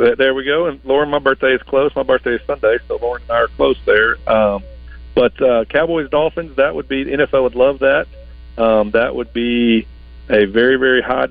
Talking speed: 220 wpm